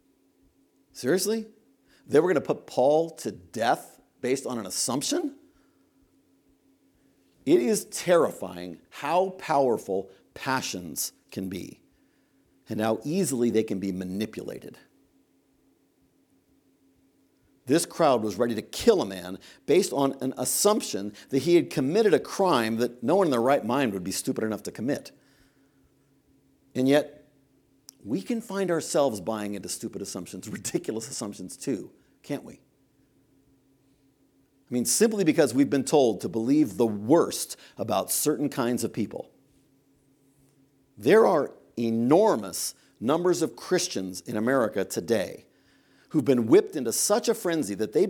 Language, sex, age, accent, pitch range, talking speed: English, male, 50-69, American, 115-180 Hz, 135 wpm